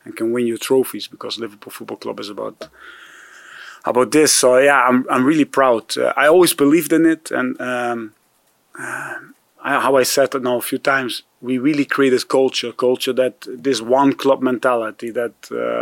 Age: 30-49